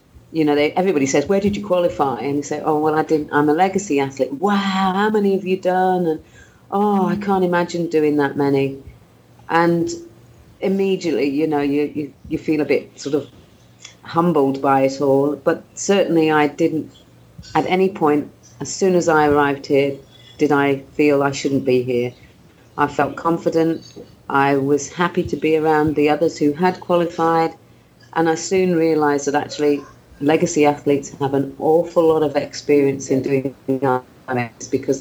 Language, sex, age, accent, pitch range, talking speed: English, female, 40-59, British, 135-170 Hz, 175 wpm